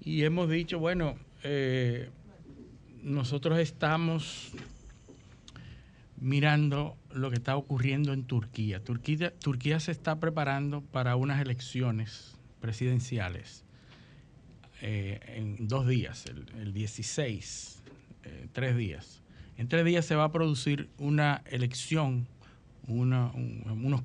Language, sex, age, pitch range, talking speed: Spanish, male, 50-69, 120-150 Hz, 105 wpm